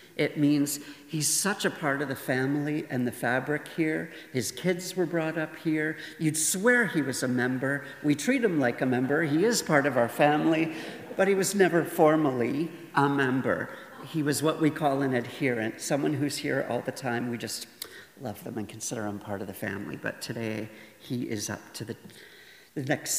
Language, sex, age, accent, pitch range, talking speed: English, male, 50-69, American, 115-155 Hz, 195 wpm